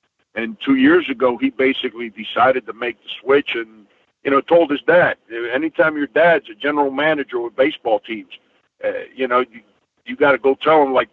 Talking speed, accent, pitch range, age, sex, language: 200 wpm, American, 115-150 Hz, 50-69, male, English